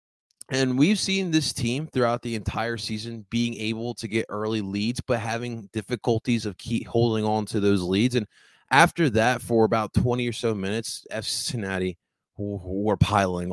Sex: male